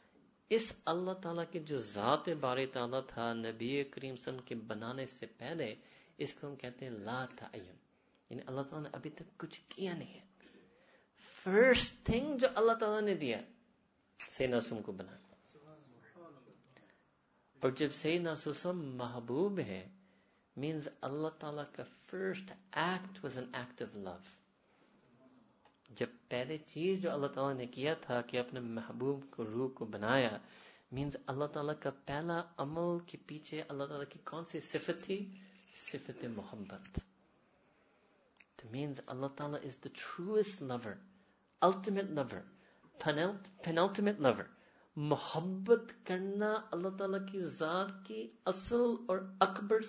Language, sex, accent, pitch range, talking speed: English, male, Indian, 130-190 Hz, 120 wpm